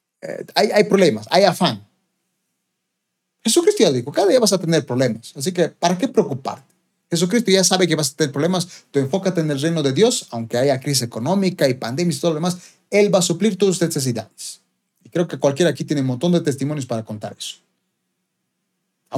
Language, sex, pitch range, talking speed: Spanish, male, 135-185 Hz, 205 wpm